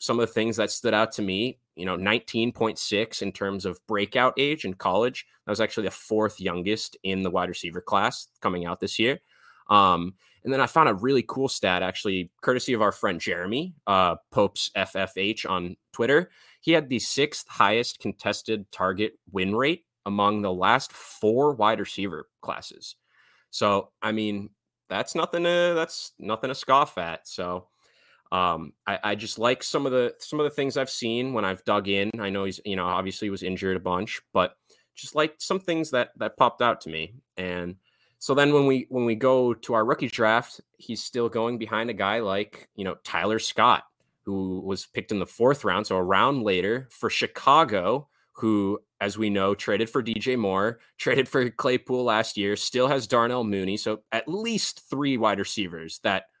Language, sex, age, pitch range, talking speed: English, male, 20-39, 100-125 Hz, 195 wpm